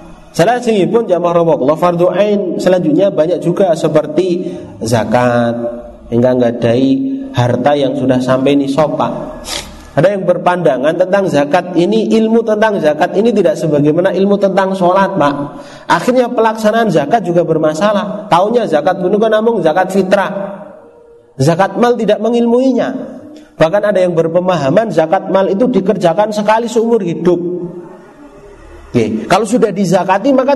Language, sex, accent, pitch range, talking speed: Indonesian, male, native, 165-230 Hz, 125 wpm